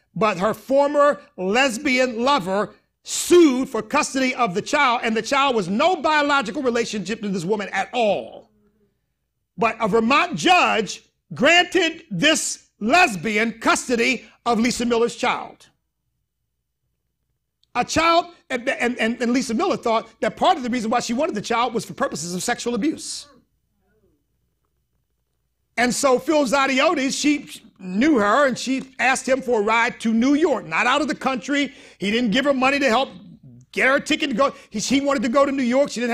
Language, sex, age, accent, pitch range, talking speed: English, male, 50-69, American, 225-280 Hz, 170 wpm